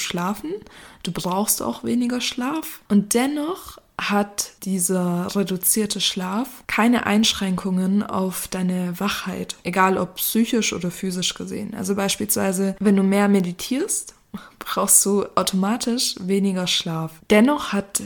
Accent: German